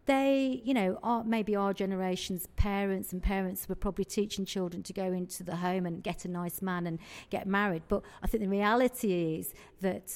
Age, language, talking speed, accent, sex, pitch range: 40-59, English, 200 wpm, British, female, 180-205 Hz